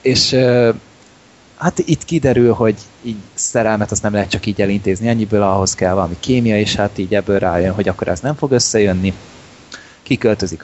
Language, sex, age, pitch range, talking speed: Hungarian, male, 20-39, 100-120 Hz, 170 wpm